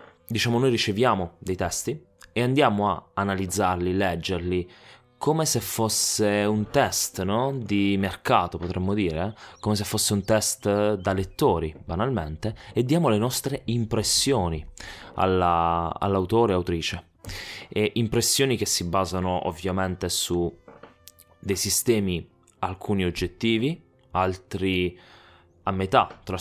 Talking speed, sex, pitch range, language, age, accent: 110 wpm, male, 90-110 Hz, Italian, 20-39, native